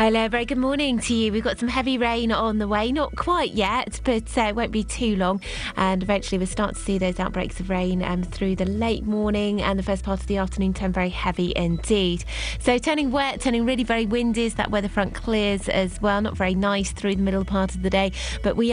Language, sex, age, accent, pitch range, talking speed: English, female, 20-39, British, 185-225 Hz, 240 wpm